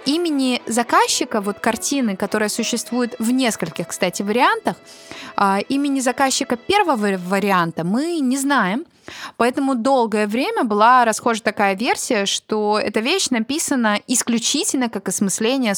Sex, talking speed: female, 120 wpm